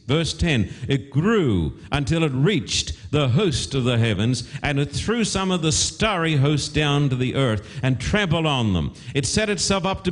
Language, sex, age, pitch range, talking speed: English, male, 50-69, 120-165 Hz, 195 wpm